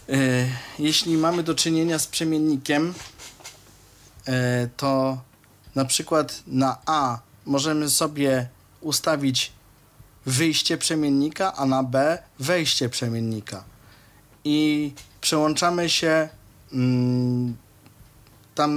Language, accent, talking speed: Polish, native, 80 wpm